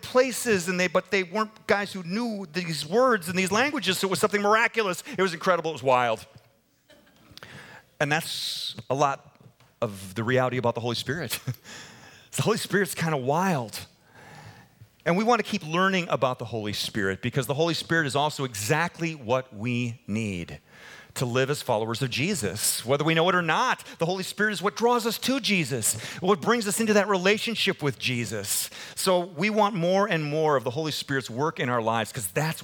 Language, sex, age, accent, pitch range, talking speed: English, male, 40-59, American, 125-185 Hz, 195 wpm